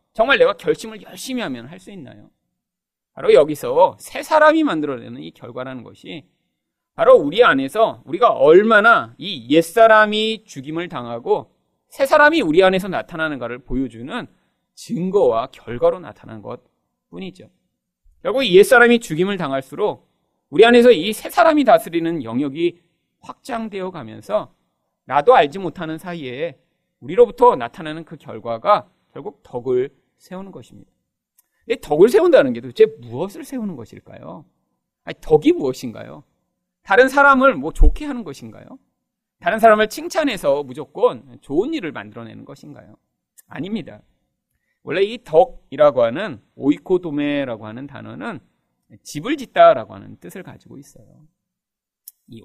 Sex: male